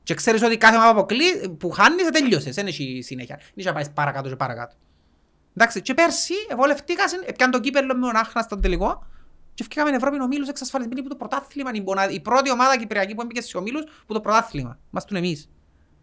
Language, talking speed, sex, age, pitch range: Greek, 200 wpm, male, 30-49, 150-250 Hz